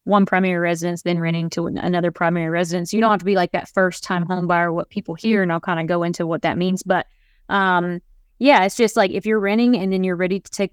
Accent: American